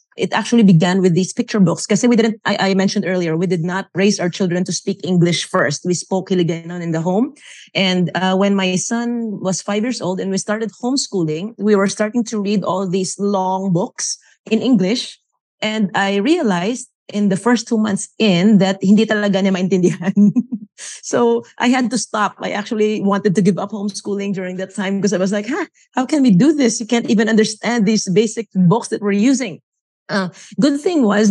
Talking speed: 205 wpm